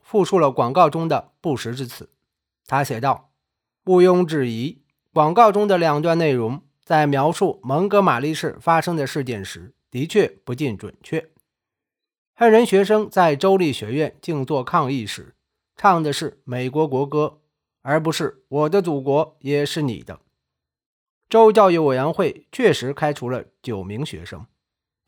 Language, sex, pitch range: Chinese, male, 135-185 Hz